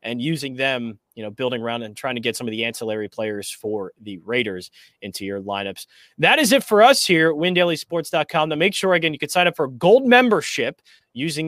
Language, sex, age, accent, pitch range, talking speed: English, male, 30-49, American, 125-175 Hz, 225 wpm